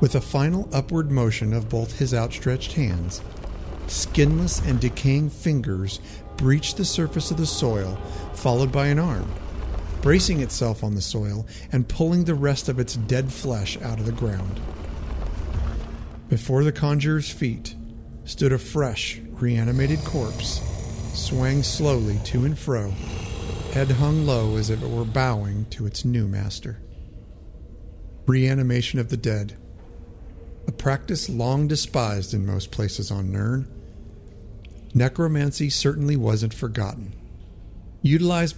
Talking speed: 130 wpm